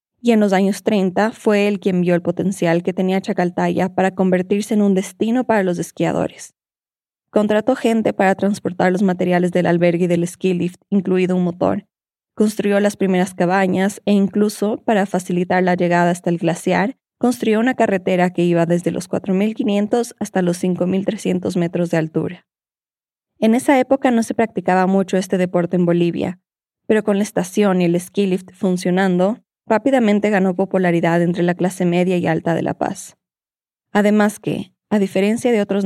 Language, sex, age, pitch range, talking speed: Spanish, female, 20-39, 175-210 Hz, 170 wpm